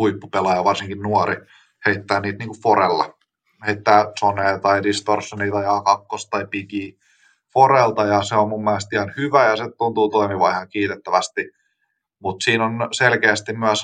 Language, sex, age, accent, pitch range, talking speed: Finnish, male, 20-39, native, 100-110 Hz, 150 wpm